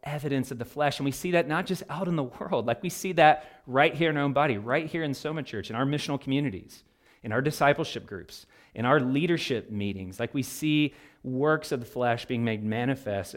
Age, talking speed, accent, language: 40-59, 230 wpm, American, English